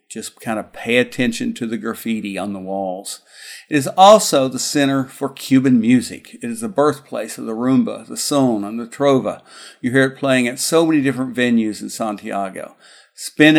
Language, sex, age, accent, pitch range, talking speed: English, male, 50-69, American, 120-155 Hz, 190 wpm